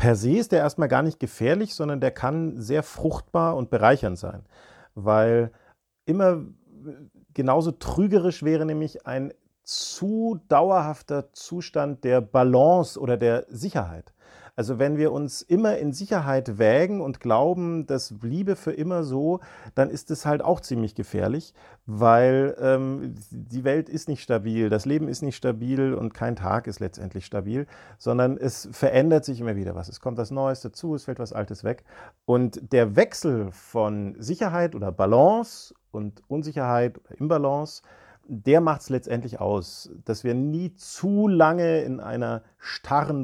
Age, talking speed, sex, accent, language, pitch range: 40-59, 155 wpm, male, German, German, 115-150 Hz